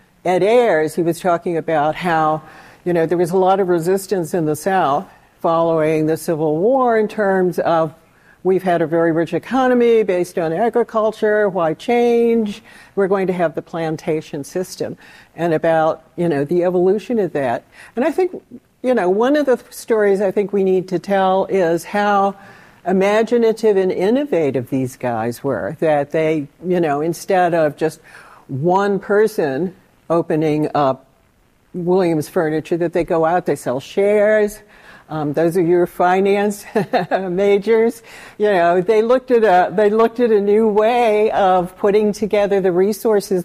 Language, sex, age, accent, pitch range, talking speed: English, female, 60-79, American, 165-210 Hz, 160 wpm